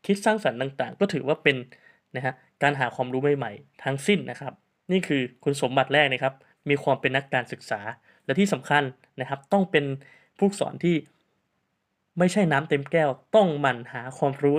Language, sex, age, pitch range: Thai, male, 20-39, 130-160 Hz